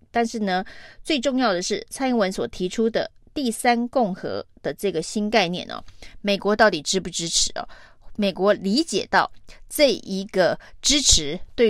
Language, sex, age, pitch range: Chinese, female, 30-49, 185-235 Hz